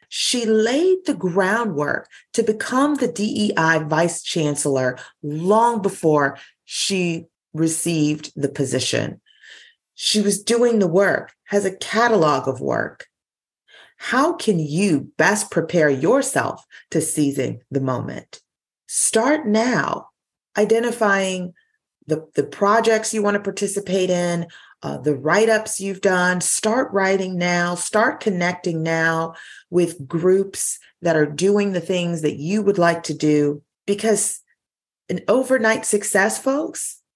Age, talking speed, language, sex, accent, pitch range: 40-59, 125 wpm, English, female, American, 165-220 Hz